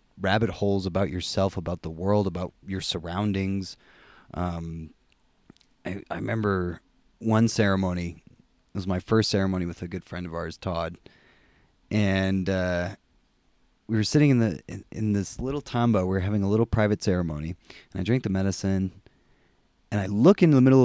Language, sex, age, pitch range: English, male, 20-39, 90-110 Hz